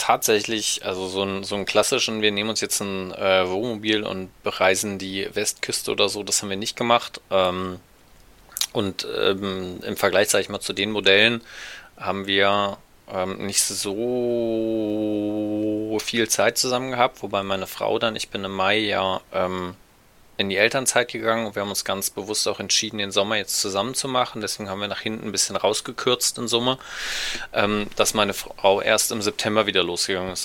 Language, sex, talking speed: German, male, 175 wpm